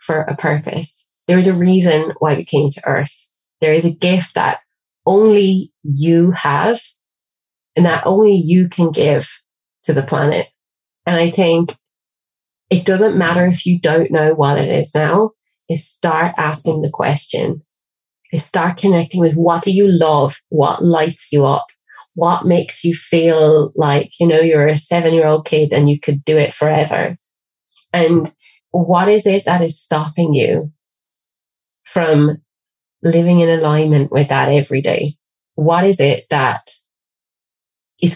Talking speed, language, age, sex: 155 wpm, English, 20-39, female